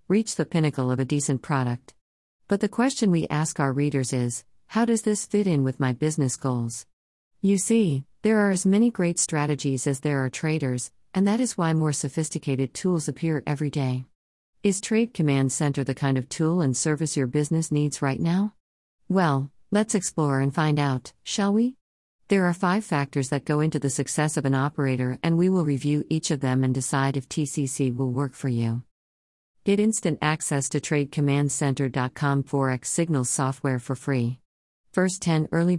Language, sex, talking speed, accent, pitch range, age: English, female, 185 wpm, American, 130-170 Hz, 50-69